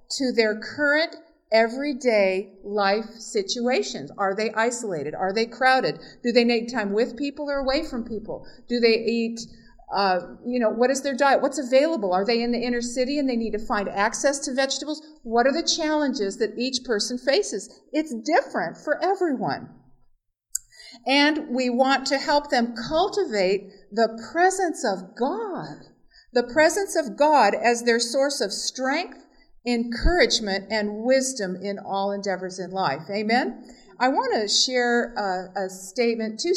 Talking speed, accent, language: 160 wpm, American, English